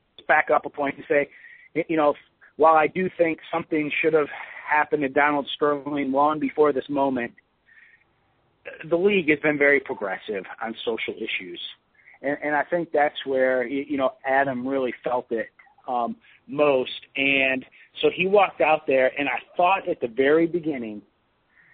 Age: 40-59